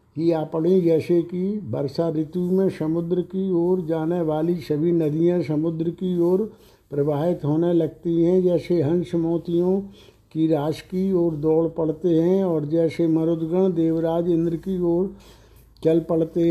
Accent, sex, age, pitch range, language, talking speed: native, male, 60-79, 160-175 Hz, Hindi, 145 wpm